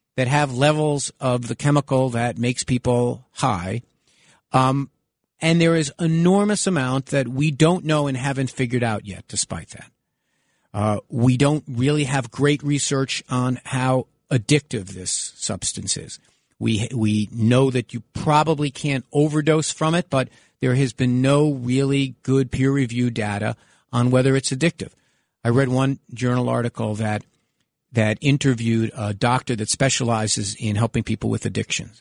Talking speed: 150 wpm